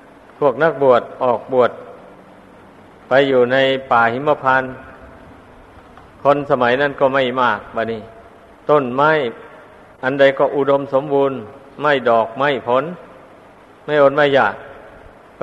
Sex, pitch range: male, 125-140 Hz